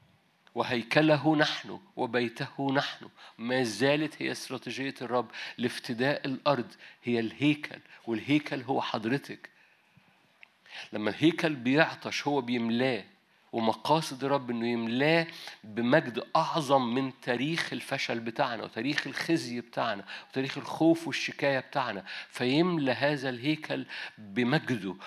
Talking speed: 100 wpm